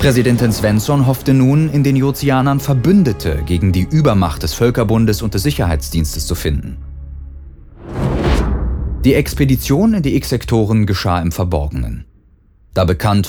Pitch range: 90-140 Hz